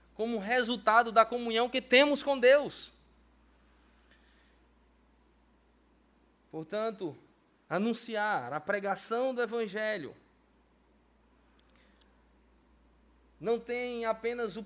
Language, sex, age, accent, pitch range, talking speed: Portuguese, male, 20-39, Brazilian, 195-235 Hz, 75 wpm